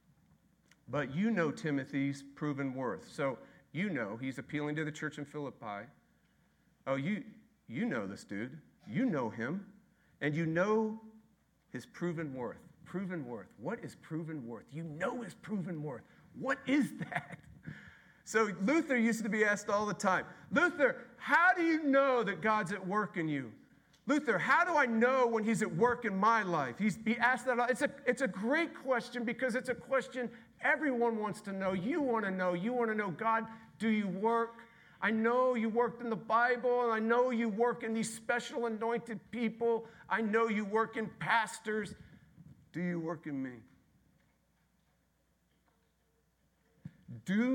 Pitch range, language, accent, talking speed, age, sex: 165-235 Hz, English, American, 175 wpm, 50-69, male